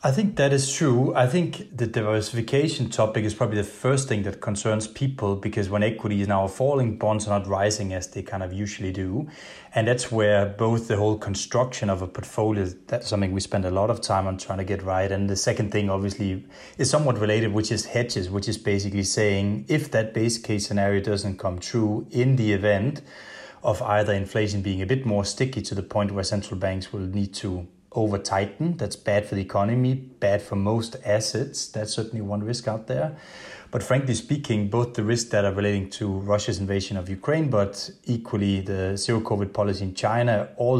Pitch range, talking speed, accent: 100-120 Hz, 205 wpm, Danish